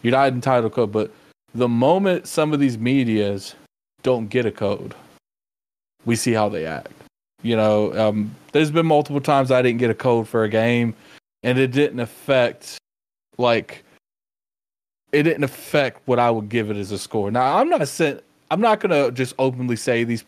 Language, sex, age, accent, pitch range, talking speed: English, male, 20-39, American, 115-150 Hz, 190 wpm